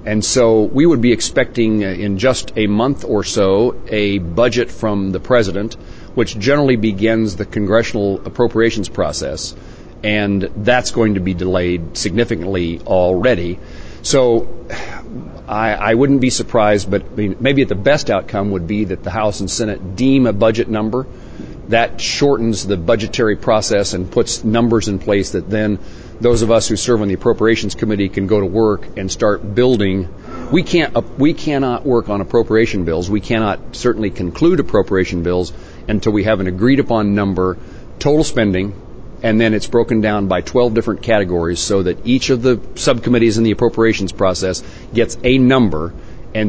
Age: 40-59